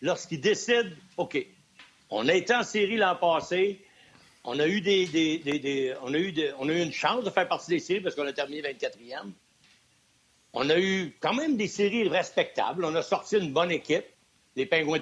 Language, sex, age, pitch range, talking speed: French, male, 60-79, 160-215 Hz, 205 wpm